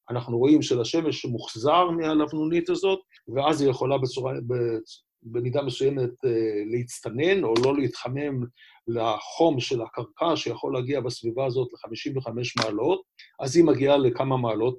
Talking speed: 120 wpm